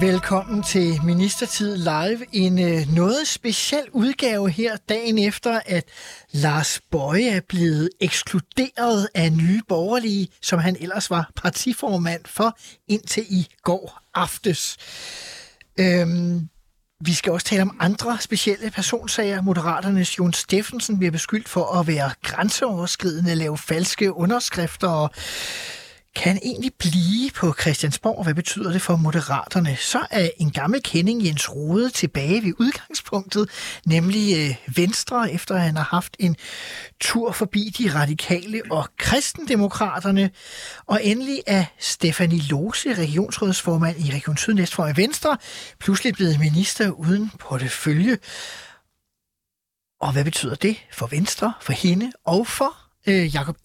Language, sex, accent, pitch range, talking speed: Danish, male, native, 165-215 Hz, 130 wpm